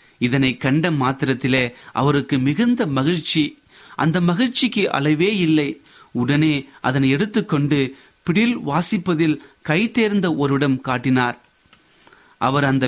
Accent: native